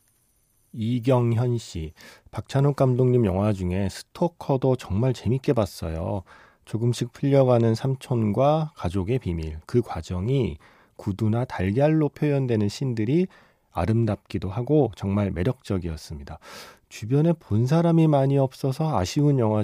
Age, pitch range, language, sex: 40-59, 95-130 Hz, Korean, male